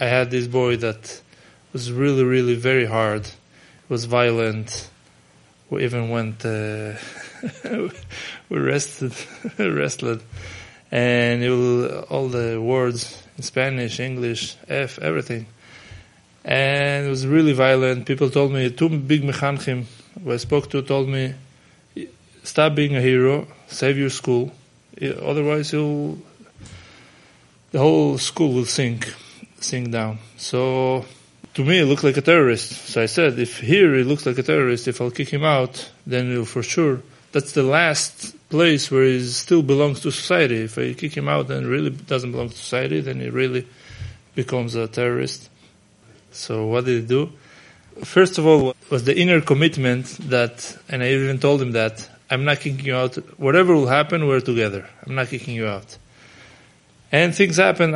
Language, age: English, 20-39